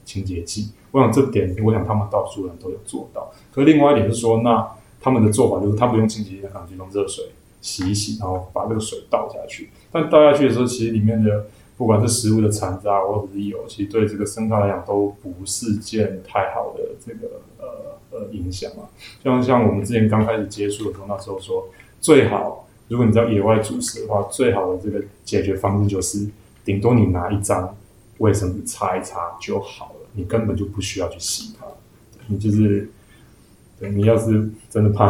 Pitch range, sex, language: 100-115 Hz, male, Chinese